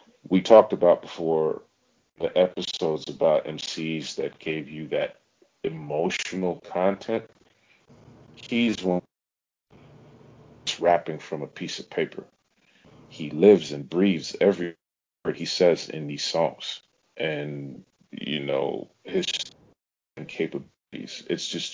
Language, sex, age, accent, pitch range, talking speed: English, male, 40-59, American, 75-95 Hz, 115 wpm